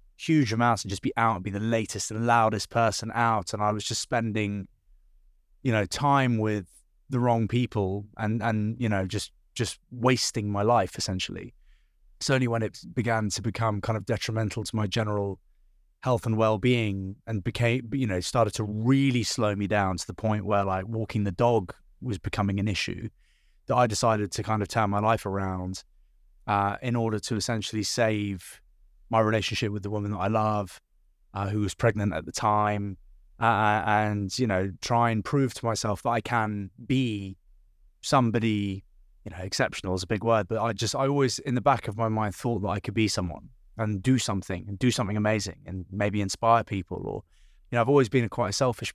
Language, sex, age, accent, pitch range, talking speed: English, male, 20-39, British, 100-115 Hz, 200 wpm